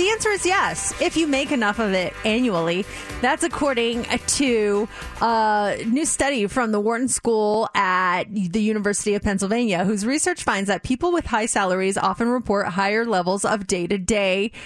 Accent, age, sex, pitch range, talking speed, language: American, 30-49, female, 205-270 Hz, 165 wpm, English